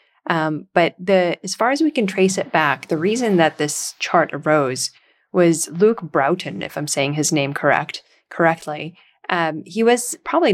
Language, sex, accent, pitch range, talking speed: English, female, American, 155-190 Hz, 175 wpm